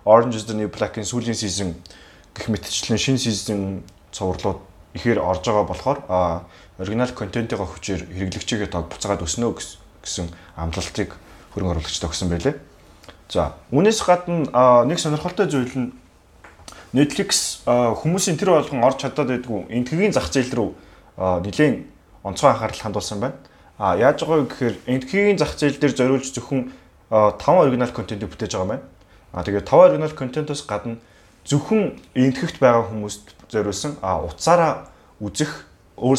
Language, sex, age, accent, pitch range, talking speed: English, male, 20-39, Korean, 95-130 Hz, 85 wpm